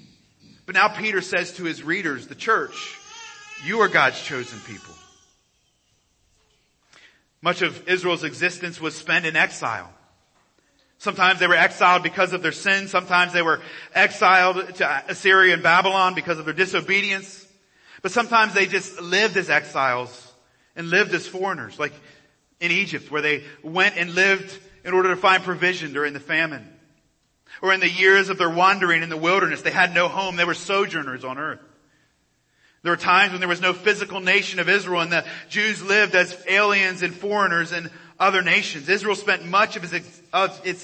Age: 40-59